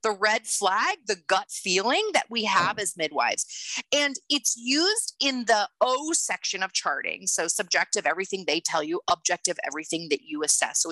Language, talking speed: English, 175 wpm